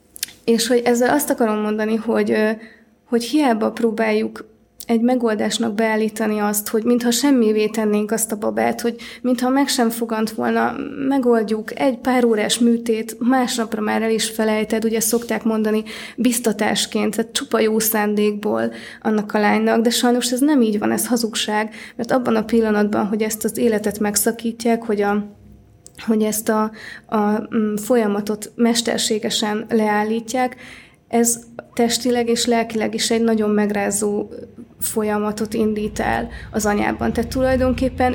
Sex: female